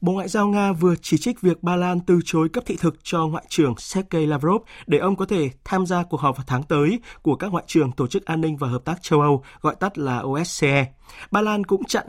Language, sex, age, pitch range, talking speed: Vietnamese, male, 20-39, 150-190 Hz, 260 wpm